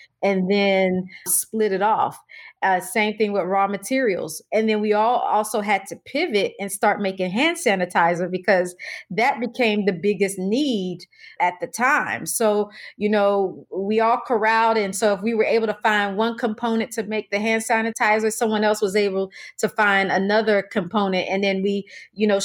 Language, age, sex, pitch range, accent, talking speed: English, 30-49, female, 195-220 Hz, American, 180 wpm